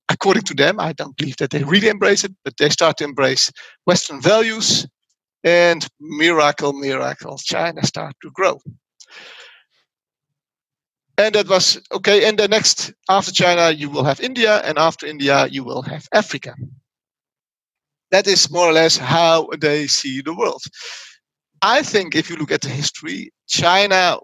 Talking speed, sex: 160 wpm, male